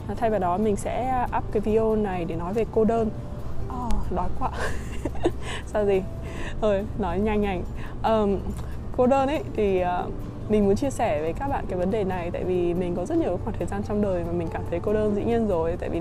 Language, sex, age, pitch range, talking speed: Vietnamese, female, 20-39, 190-230 Hz, 230 wpm